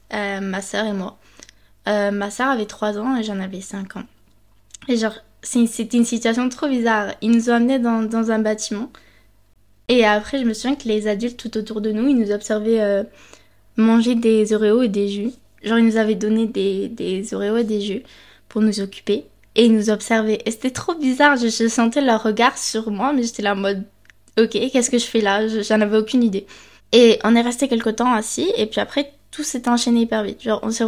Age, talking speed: 20-39, 225 wpm